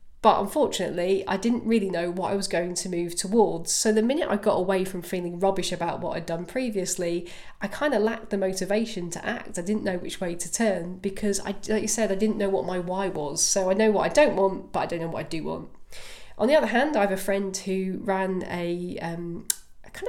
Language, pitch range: English, 175-210 Hz